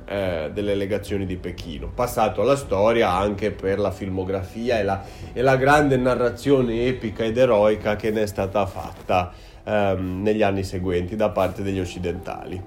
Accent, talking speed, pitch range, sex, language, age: native, 150 wpm, 105-140 Hz, male, Italian, 30-49